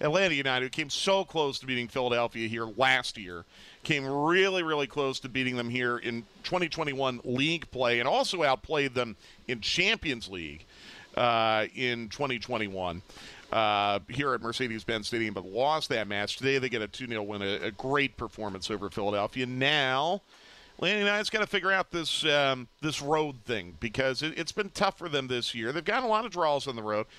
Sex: male